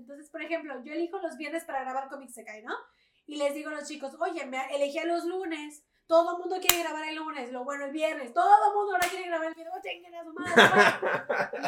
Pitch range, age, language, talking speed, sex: 270-335 Hz, 20-39, Spanish, 240 wpm, female